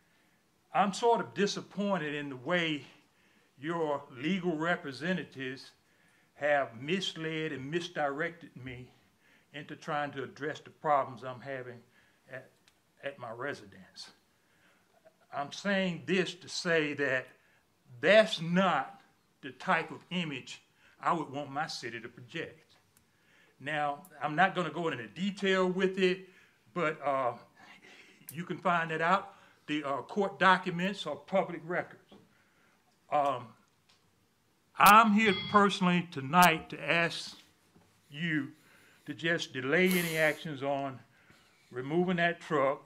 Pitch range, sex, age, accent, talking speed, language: 145-185 Hz, male, 60-79, American, 120 wpm, English